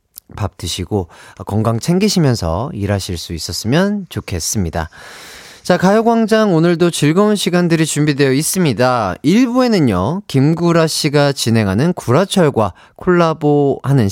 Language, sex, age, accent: Korean, male, 30-49, native